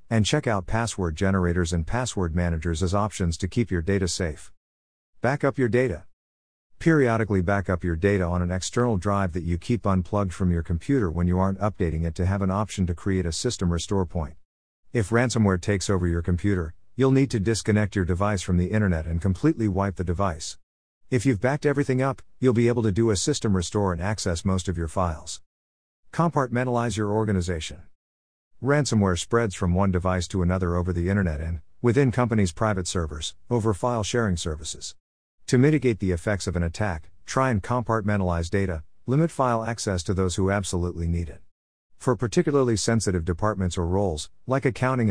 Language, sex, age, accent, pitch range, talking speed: English, male, 50-69, American, 85-115 Hz, 180 wpm